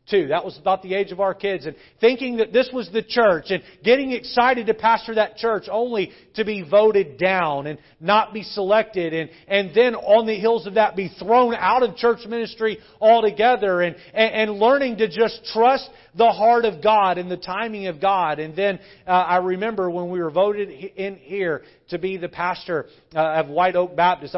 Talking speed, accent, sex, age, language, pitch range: 205 wpm, American, male, 40-59, English, 150-205 Hz